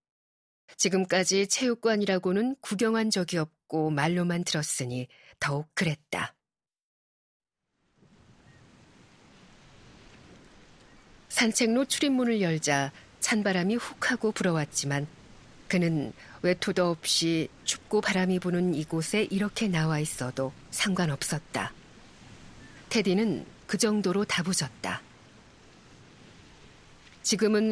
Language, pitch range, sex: Korean, 155-210 Hz, female